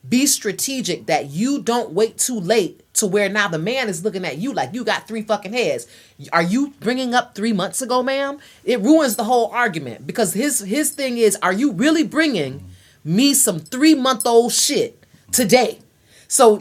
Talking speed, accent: 190 wpm, American